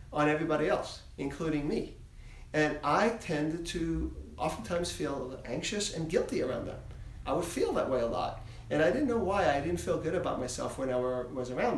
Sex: male